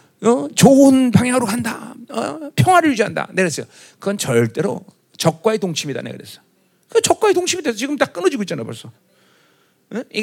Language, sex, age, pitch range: Korean, male, 40-59, 200-310 Hz